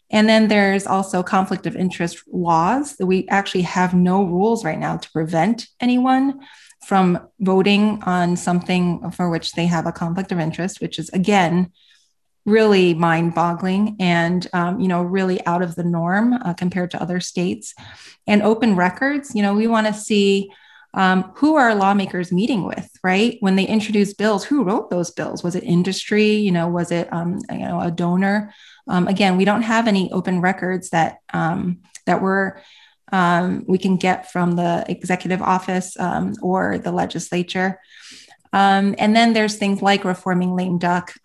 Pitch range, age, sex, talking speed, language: 175-200 Hz, 30-49, female, 175 wpm, English